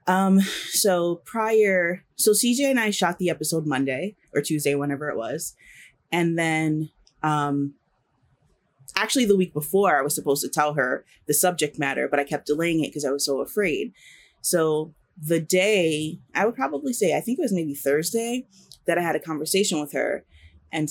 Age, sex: 30-49, female